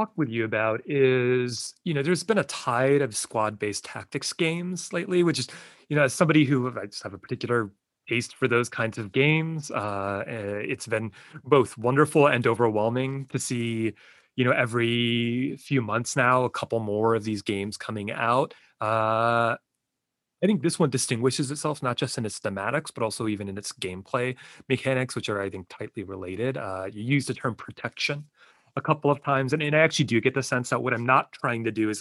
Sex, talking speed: male, 200 wpm